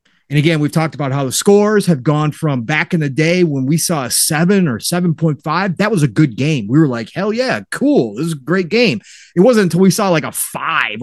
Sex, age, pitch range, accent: male, 30-49, 135-175 Hz, American